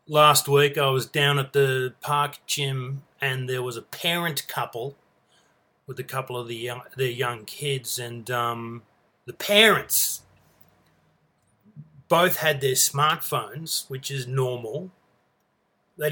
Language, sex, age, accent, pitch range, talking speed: English, male, 30-49, Australian, 140-175 Hz, 125 wpm